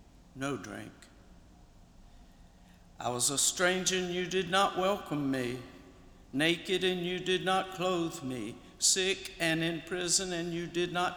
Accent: American